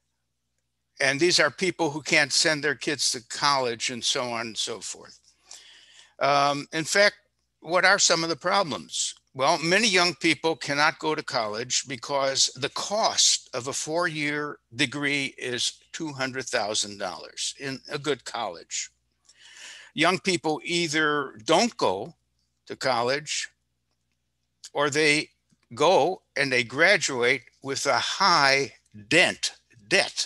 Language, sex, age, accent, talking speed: English, male, 60-79, American, 130 wpm